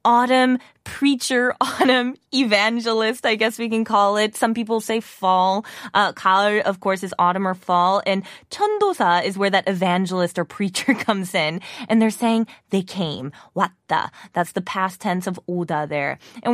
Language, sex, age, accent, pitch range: Korean, female, 20-39, American, 190-250 Hz